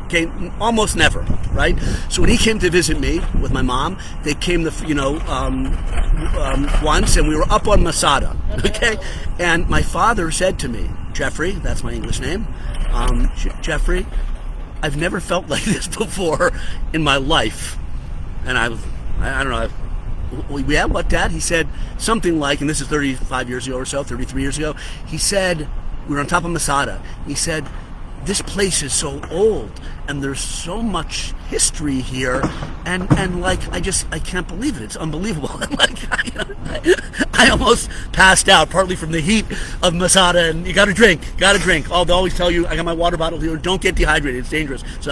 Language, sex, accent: English, male, American